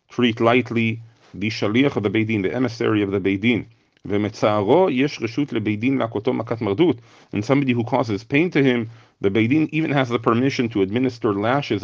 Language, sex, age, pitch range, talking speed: English, male, 40-59, 105-135 Hz, 140 wpm